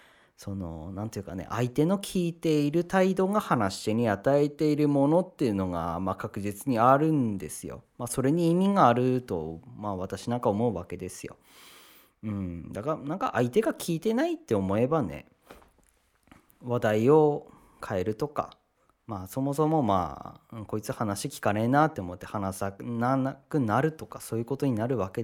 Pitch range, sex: 95-140 Hz, male